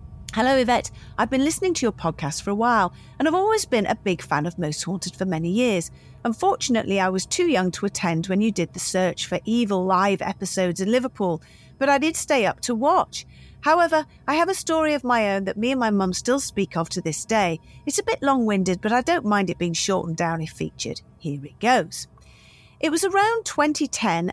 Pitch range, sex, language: 180-260 Hz, female, English